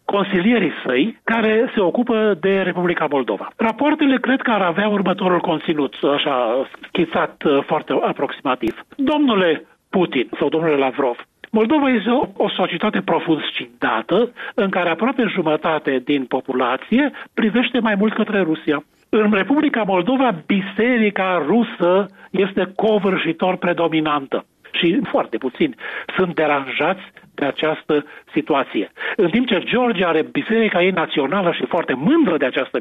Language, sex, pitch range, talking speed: Romanian, male, 165-235 Hz, 130 wpm